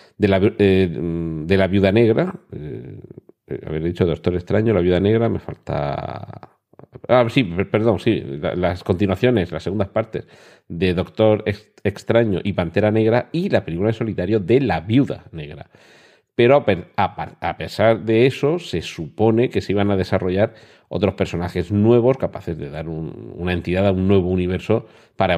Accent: Spanish